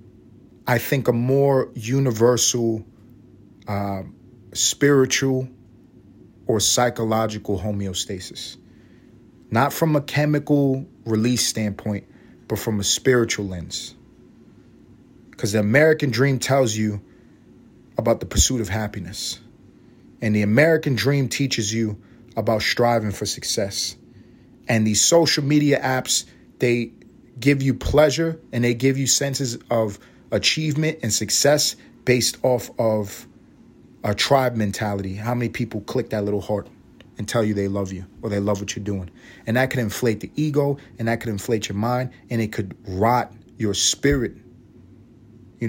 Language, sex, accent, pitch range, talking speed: English, male, American, 105-130 Hz, 135 wpm